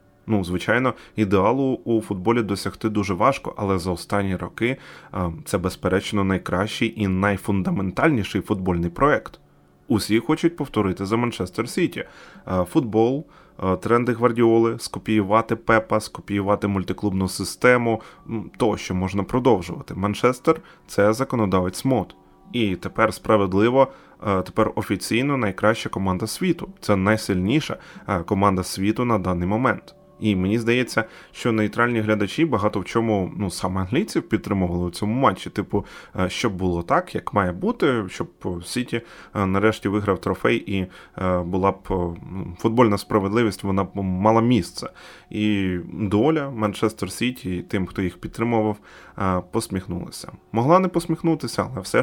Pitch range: 95-115 Hz